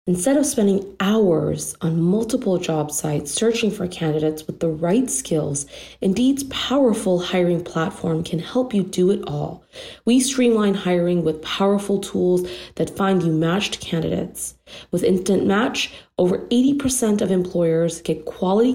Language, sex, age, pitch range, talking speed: English, female, 30-49, 170-210 Hz, 145 wpm